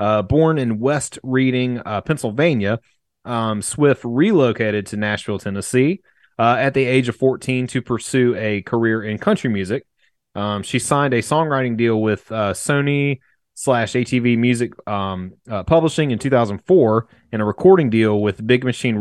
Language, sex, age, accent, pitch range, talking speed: English, male, 30-49, American, 110-145 Hz, 160 wpm